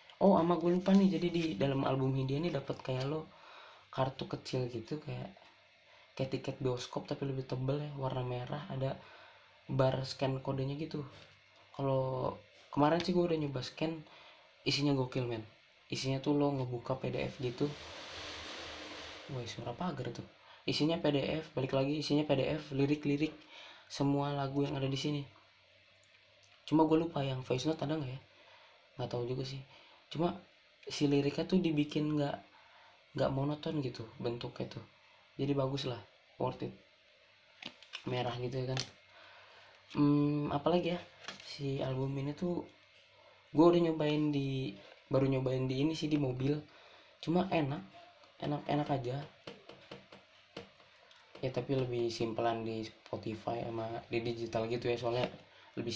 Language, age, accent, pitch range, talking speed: Indonesian, 20-39, native, 125-155 Hz, 145 wpm